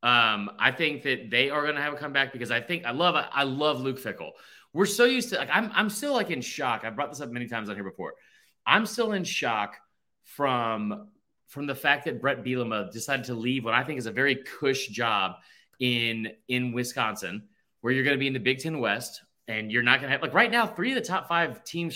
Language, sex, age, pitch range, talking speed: English, male, 30-49, 120-170 Hz, 250 wpm